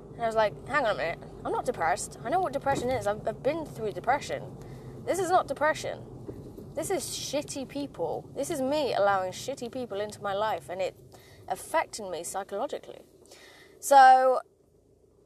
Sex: female